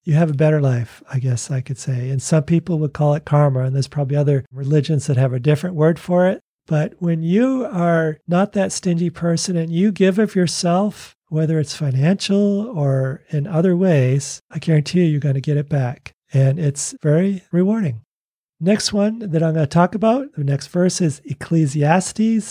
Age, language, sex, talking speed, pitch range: 40-59, English, male, 195 wpm, 140-175 Hz